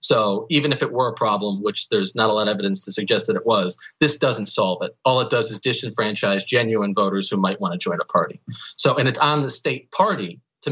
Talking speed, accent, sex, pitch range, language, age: 250 wpm, American, male, 110-150 Hz, English, 40-59